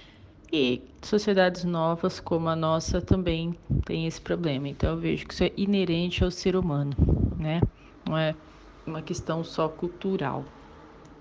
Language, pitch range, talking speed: Portuguese, 150-175 Hz, 145 wpm